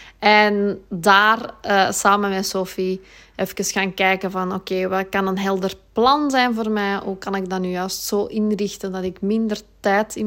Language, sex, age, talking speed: Dutch, female, 20-39, 185 wpm